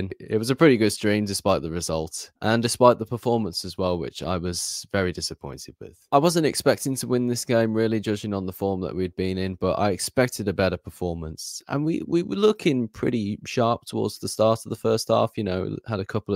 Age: 20-39